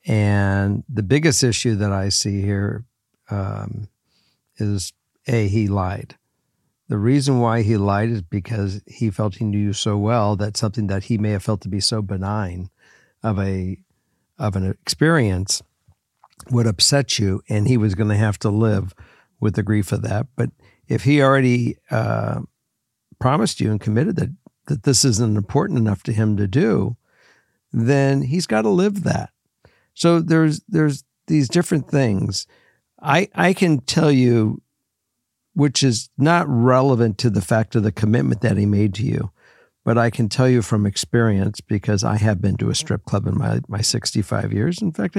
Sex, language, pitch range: male, English, 105-135 Hz